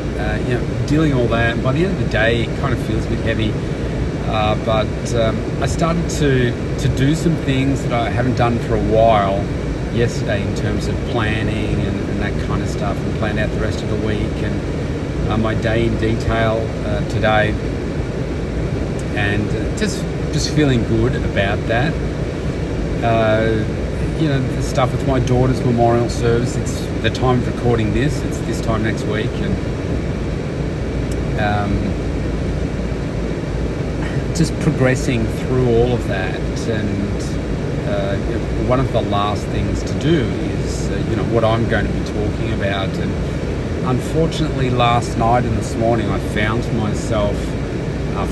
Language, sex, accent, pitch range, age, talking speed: English, male, Australian, 110-130 Hz, 40-59, 165 wpm